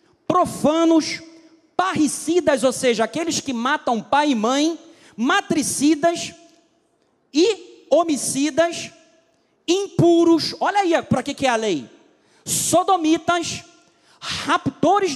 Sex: male